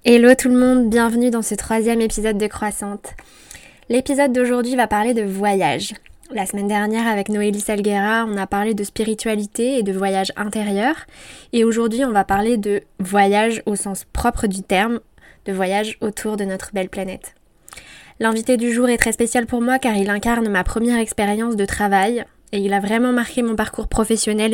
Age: 10-29